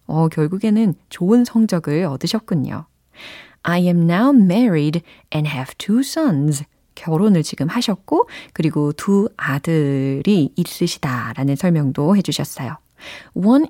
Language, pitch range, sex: Korean, 150-225 Hz, female